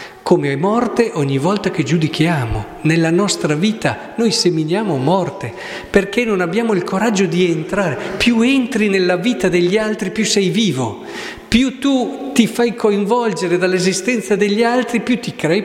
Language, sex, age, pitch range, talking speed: Italian, male, 50-69, 150-205 Hz, 155 wpm